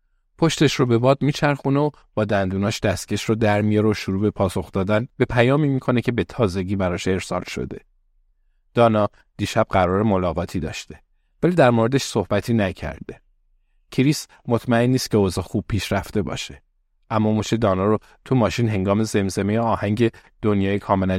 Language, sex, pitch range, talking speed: Persian, male, 95-115 Hz, 155 wpm